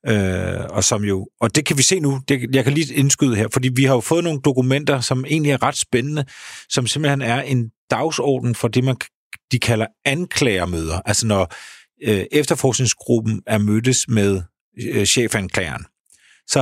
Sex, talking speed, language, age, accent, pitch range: male, 175 wpm, Danish, 40-59, native, 100-130 Hz